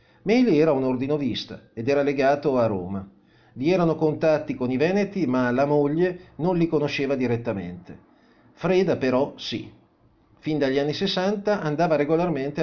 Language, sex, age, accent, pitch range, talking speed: Italian, male, 40-59, native, 115-155 Hz, 150 wpm